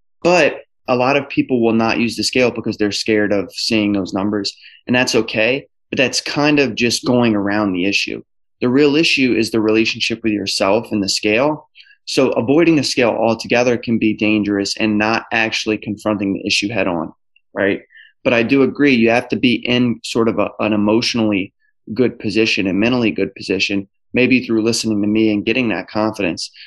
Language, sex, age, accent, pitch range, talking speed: English, male, 20-39, American, 100-120 Hz, 190 wpm